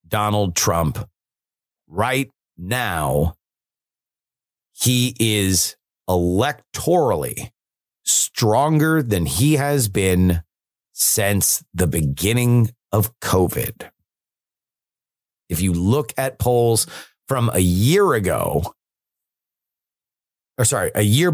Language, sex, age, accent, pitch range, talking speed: English, male, 30-49, American, 100-140 Hz, 85 wpm